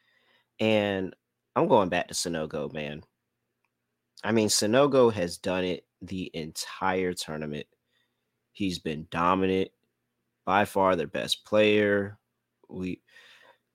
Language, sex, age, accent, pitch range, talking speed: English, male, 30-49, American, 80-100 Hz, 110 wpm